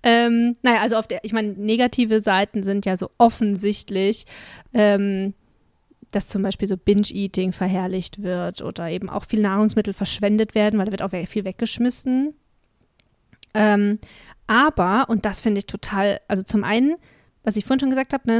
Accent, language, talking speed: German, German, 175 wpm